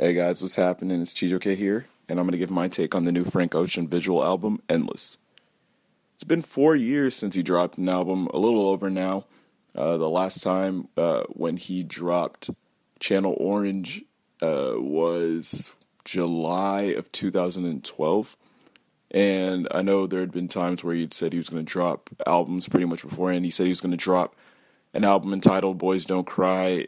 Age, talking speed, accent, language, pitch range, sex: 20-39, 180 wpm, American, English, 90-95 Hz, male